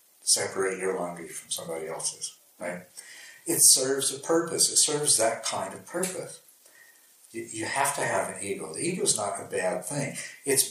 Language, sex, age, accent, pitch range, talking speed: English, male, 60-79, American, 95-135 Hz, 180 wpm